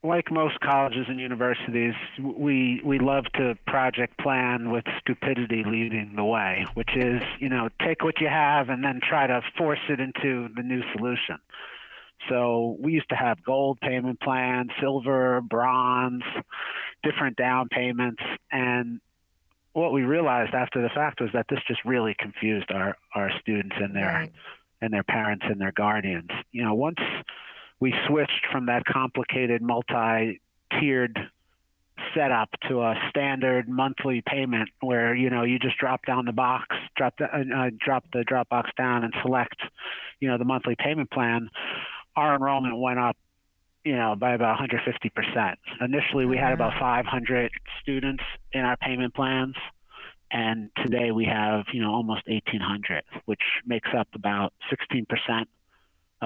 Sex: male